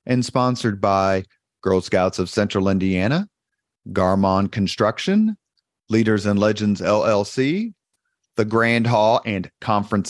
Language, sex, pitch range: English, male, 105-130 Hz